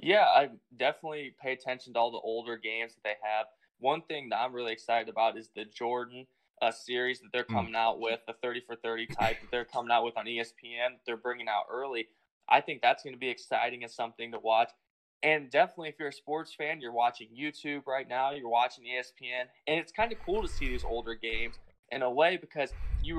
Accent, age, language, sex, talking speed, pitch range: American, 20-39, English, male, 225 wpm, 115-130 Hz